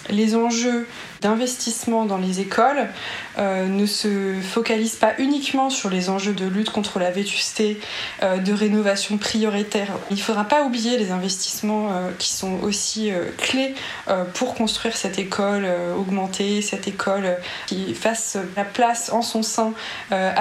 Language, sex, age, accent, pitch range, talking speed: French, female, 20-39, French, 190-225 Hz, 160 wpm